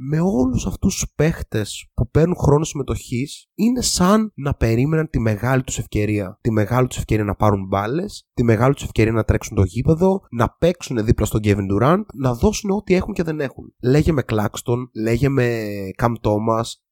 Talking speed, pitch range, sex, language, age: 180 wpm, 105-160 Hz, male, Greek, 20-39